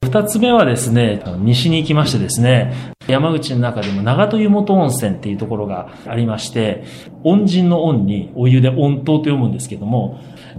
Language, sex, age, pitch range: Japanese, male, 40-59, 115-160 Hz